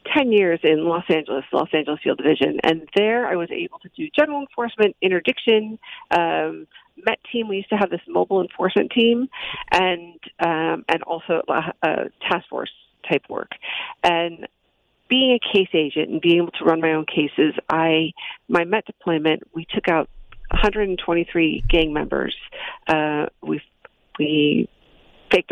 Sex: female